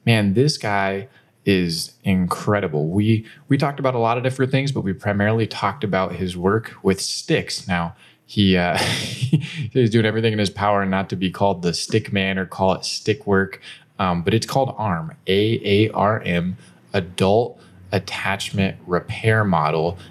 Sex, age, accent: male, 20-39, American